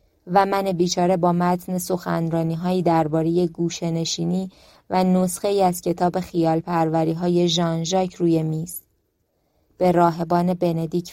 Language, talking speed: Persian, 125 wpm